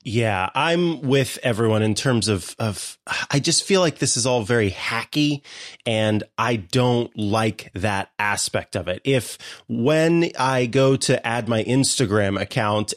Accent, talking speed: American, 155 wpm